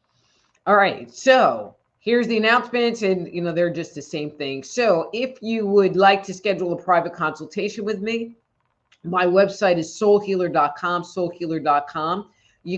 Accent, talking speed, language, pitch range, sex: American, 150 wpm, English, 160-200 Hz, female